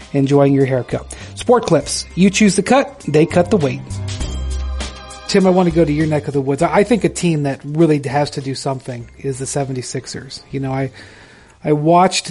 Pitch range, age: 130-155 Hz, 40-59